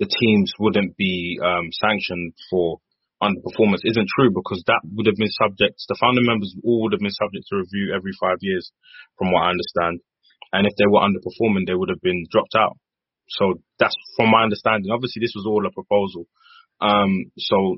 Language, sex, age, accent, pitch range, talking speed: English, male, 20-39, British, 100-120 Hz, 190 wpm